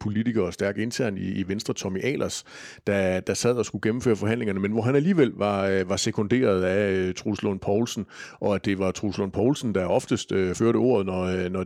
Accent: native